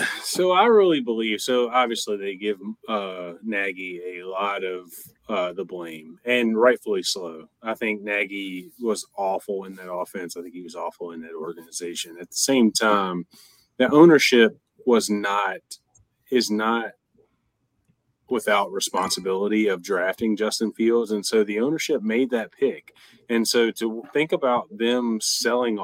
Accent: American